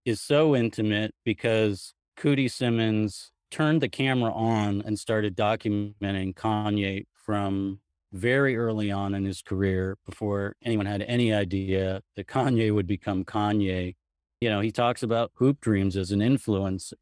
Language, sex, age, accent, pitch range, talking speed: English, male, 40-59, American, 100-120 Hz, 145 wpm